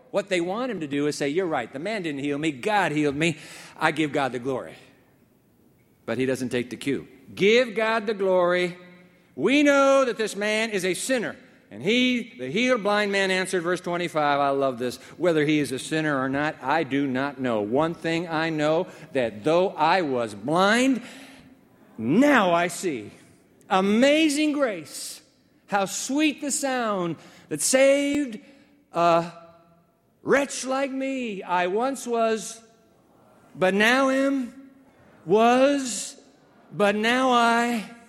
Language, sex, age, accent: English, male, 50-69, American